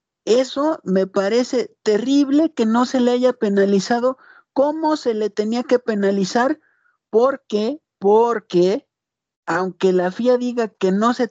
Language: Spanish